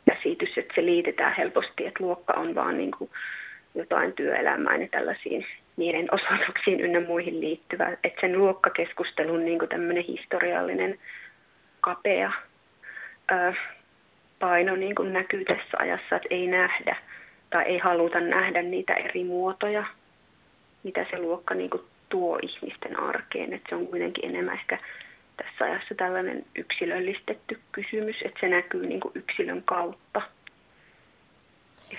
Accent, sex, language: native, female, Finnish